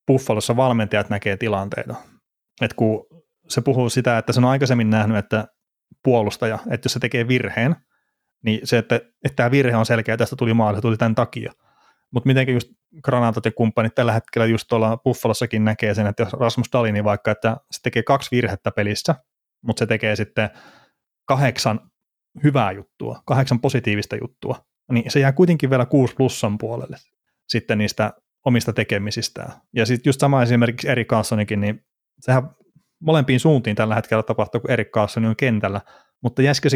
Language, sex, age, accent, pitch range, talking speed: Finnish, male, 30-49, native, 110-125 Hz, 170 wpm